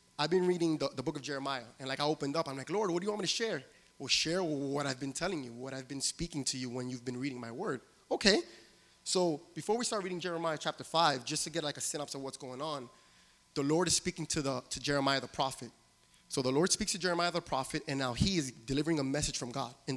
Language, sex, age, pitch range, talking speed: English, male, 20-39, 135-180 Hz, 265 wpm